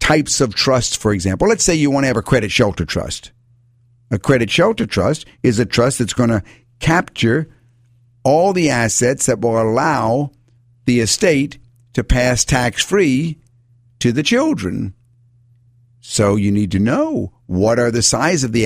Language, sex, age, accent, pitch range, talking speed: English, male, 50-69, American, 110-130 Hz, 165 wpm